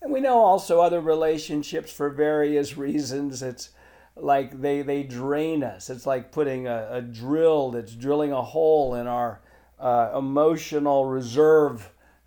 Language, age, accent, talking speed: English, 50-69, American, 145 wpm